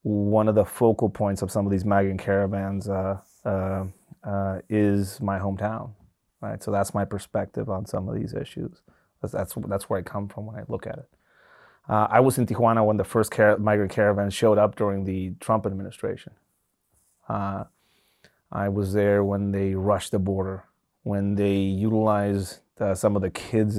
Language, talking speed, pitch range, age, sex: English, 185 wpm, 95-105 Hz, 30-49, male